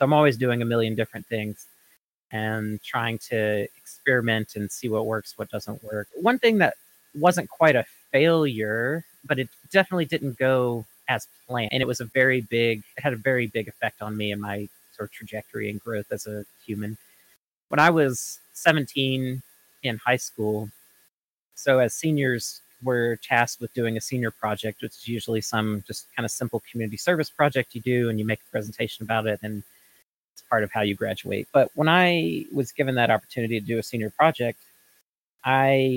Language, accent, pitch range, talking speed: English, American, 110-130 Hz, 190 wpm